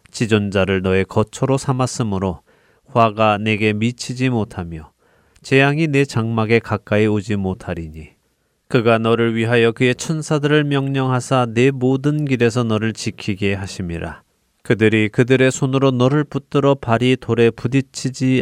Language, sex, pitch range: Korean, male, 95-125 Hz